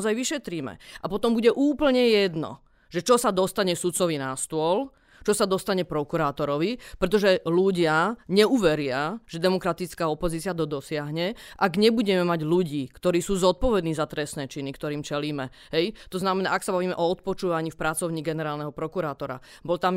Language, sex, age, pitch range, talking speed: Slovak, female, 30-49, 160-195 Hz, 150 wpm